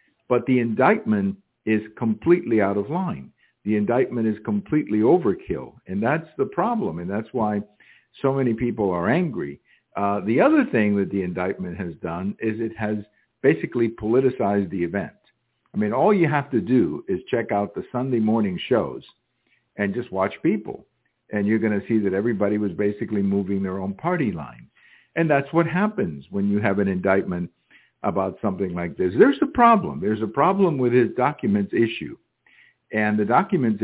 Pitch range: 100-160 Hz